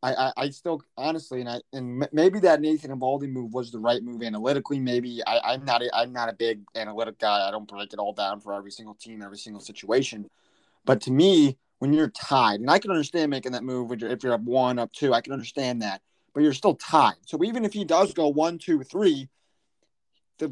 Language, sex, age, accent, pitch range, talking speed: English, male, 30-49, American, 120-155 Hz, 230 wpm